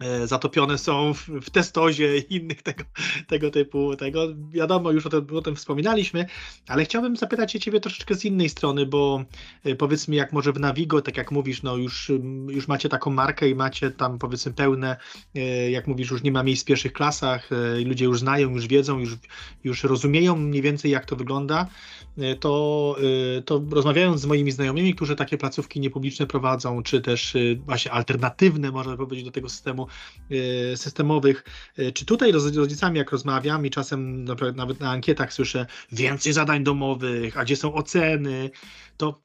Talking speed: 170 wpm